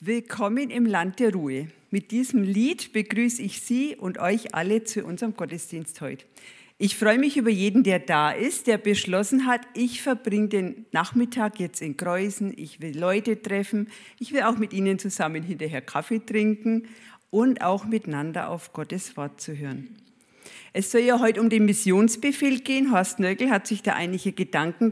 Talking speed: 175 wpm